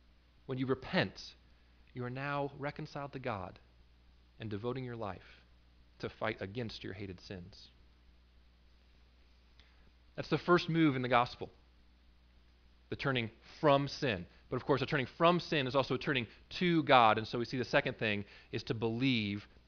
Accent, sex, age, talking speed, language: American, male, 30-49, 160 wpm, English